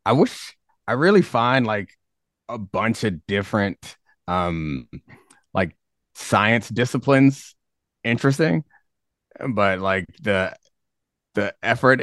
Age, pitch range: 30-49, 95-115 Hz